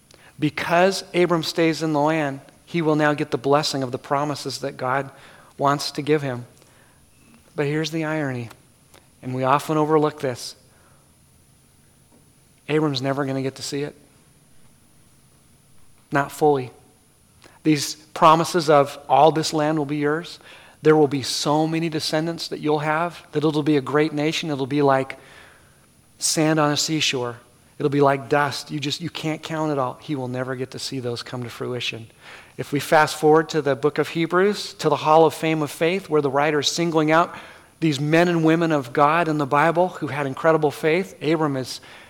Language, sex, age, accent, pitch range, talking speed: English, male, 40-59, American, 145-170 Hz, 180 wpm